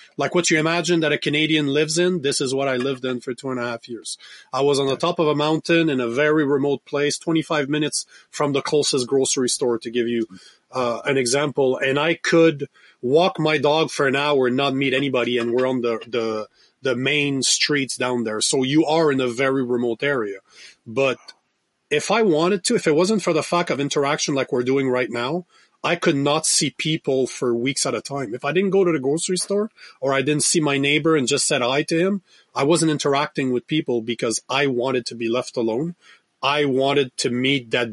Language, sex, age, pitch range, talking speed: English, male, 30-49, 130-155 Hz, 225 wpm